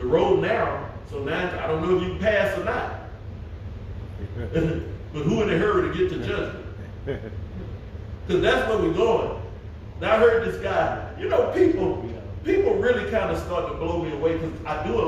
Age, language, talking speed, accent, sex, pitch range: 40-59, English, 195 wpm, American, male, 95-110 Hz